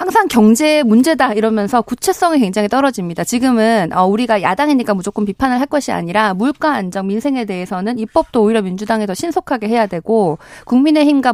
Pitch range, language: 195-270 Hz, Korean